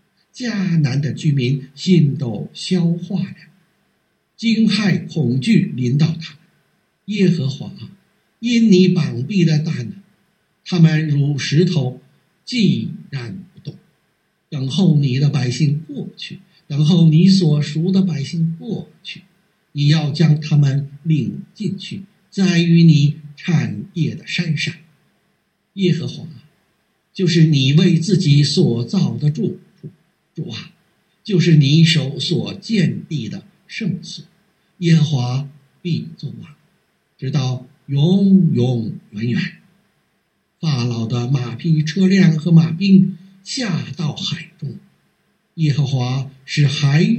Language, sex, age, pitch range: Chinese, male, 60-79, 145-185 Hz